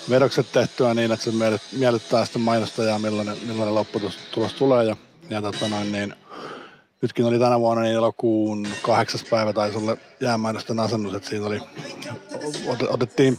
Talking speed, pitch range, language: 150 wpm, 105-125 Hz, Finnish